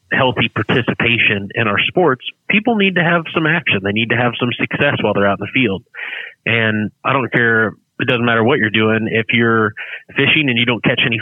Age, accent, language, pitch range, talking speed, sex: 30-49, American, English, 105-115 Hz, 220 wpm, male